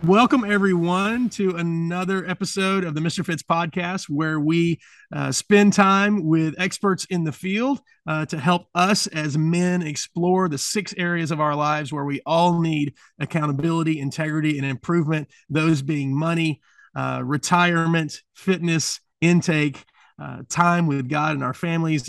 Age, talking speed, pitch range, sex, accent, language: 30-49, 150 wpm, 145-175 Hz, male, American, English